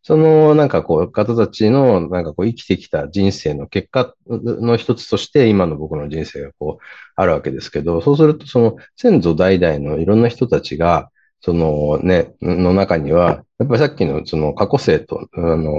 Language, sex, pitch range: Japanese, male, 80-125 Hz